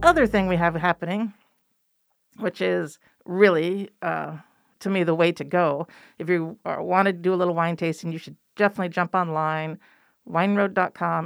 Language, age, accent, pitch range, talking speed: English, 50-69, American, 160-200 Hz, 160 wpm